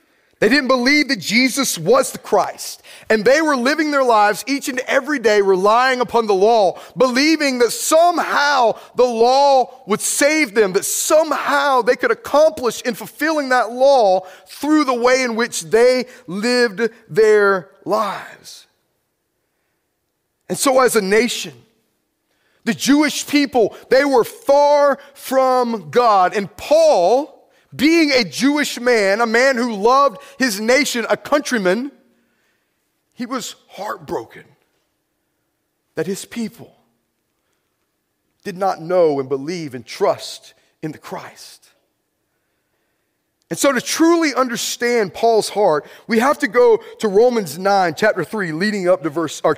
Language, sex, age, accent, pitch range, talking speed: English, male, 30-49, American, 210-280 Hz, 135 wpm